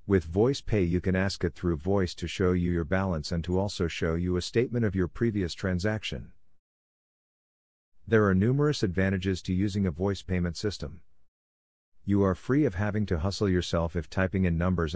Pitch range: 85-100 Hz